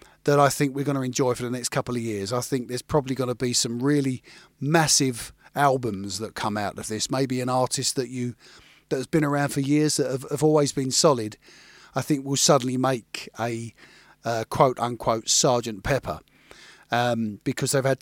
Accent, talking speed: British, 200 wpm